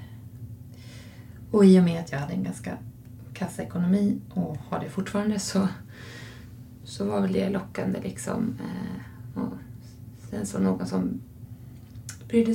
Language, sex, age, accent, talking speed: Swedish, female, 20-39, native, 125 wpm